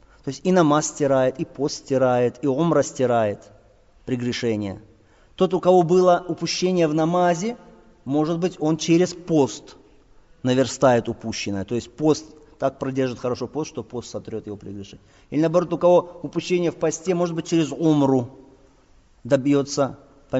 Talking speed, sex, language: 150 wpm, male, Russian